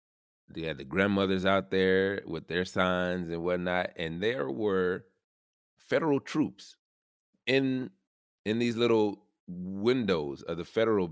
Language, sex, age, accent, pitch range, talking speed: English, male, 30-49, American, 90-105 Hz, 130 wpm